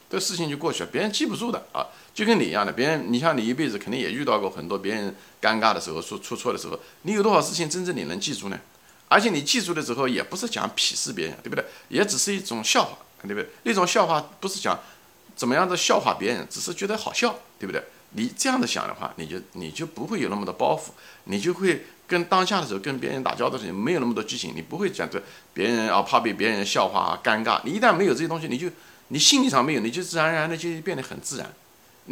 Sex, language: male, Chinese